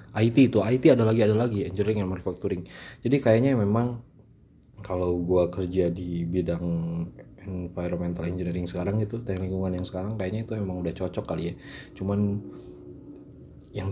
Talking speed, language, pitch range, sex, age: 150 wpm, Indonesian, 90-110 Hz, male, 20-39